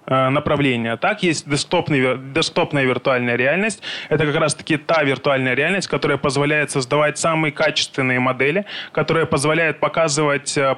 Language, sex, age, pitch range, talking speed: Ukrainian, male, 20-39, 140-165 Hz, 120 wpm